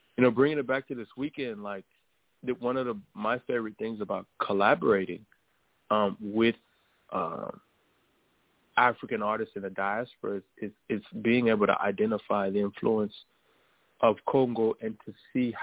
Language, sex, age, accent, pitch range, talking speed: English, male, 20-39, American, 105-120 Hz, 150 wpm